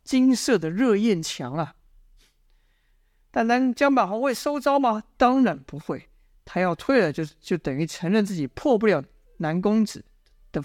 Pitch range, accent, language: 175-245 Hz, native, Chinese